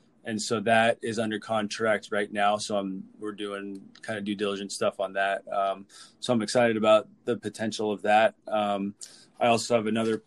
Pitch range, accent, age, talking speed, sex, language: 100-115 Hz, American, 20-39, 195 wpm, male, English